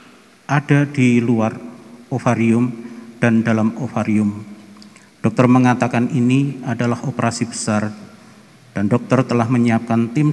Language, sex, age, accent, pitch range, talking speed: Indonesian, male, 50-69, native, 110-130 Hz, 105 wpm